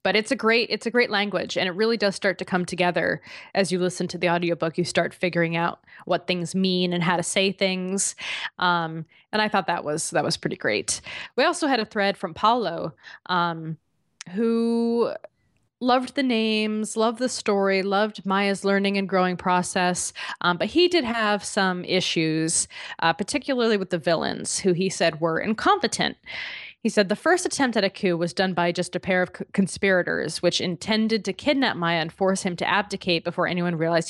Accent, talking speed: American, 195 wpm